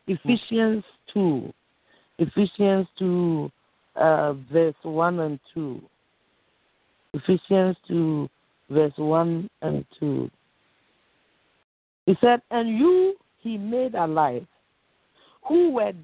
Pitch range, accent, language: 175-245 Hz, Nigerian, English